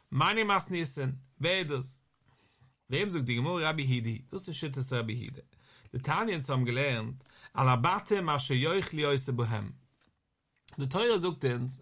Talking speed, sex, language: 155 wpm, male, English